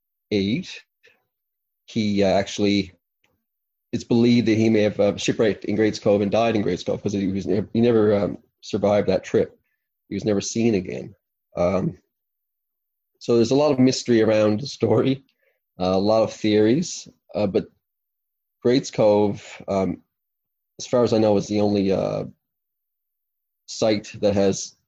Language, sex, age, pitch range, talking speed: English, male, 30-49, 100-120 Hz, 155 wpm